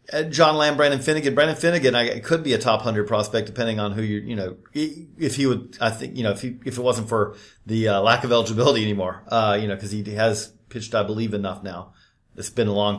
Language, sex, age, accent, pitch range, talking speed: English, male, 40-59, American, 105-145 Hz, 245 wpm